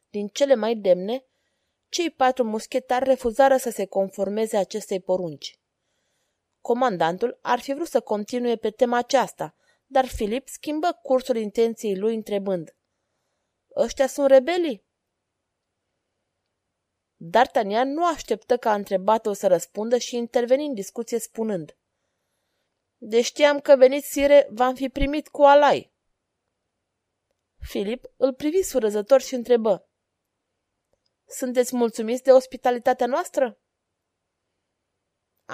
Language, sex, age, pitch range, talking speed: Romanian, female, 20-39, 185-265 Hz, 115 wpm